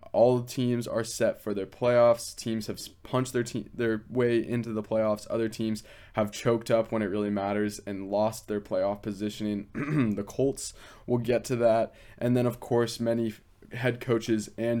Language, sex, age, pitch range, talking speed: English, male, 20-39, 105-115 Hz, 180 wpm